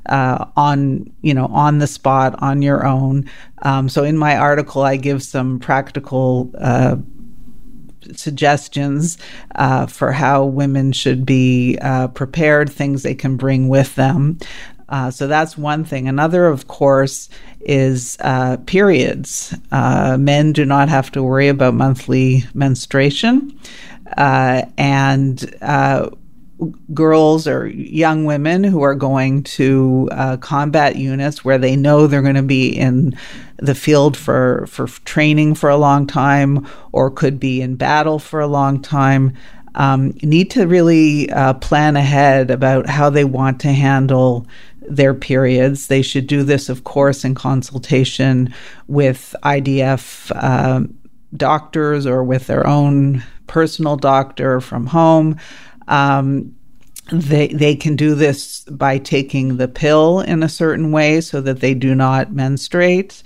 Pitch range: 130-150 Hz